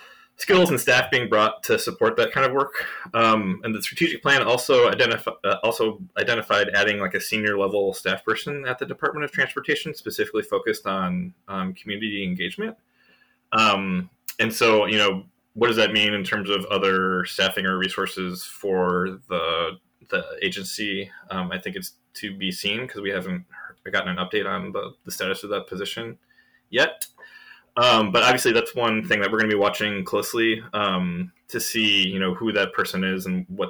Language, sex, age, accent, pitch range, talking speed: English, male, 20-39, American, 95-125 Hz, 185 wpm